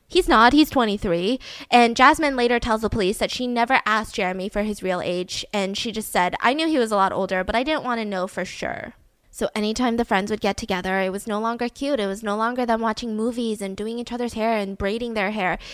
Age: 10-29